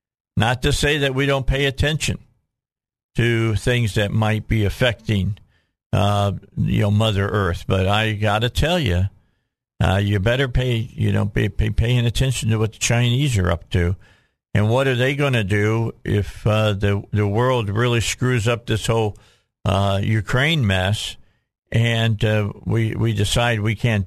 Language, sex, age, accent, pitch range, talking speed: English, male, 50-69, American, 105-135 Hz, 175 wpm